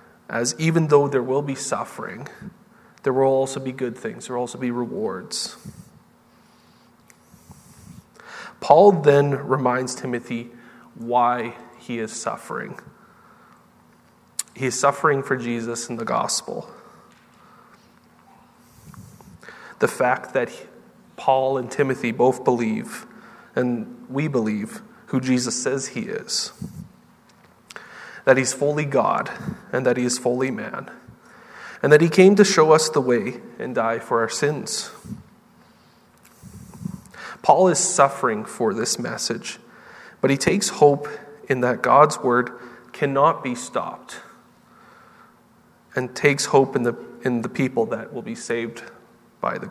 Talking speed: 125 wpm